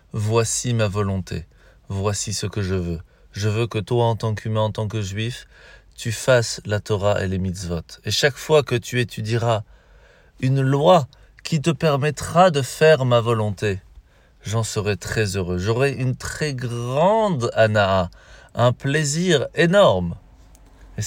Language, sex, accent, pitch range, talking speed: French, male, French, 105-135 Hz, 155 wpm